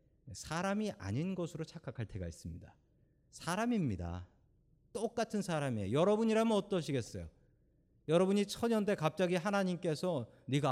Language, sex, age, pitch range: Korean, male, 40-59, 120-185 Hz